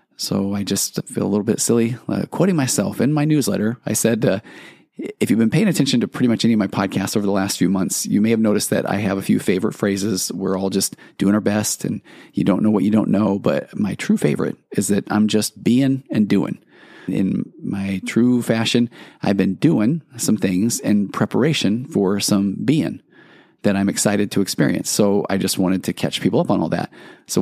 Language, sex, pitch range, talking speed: English, male, 100-120 Hz, 220 wpm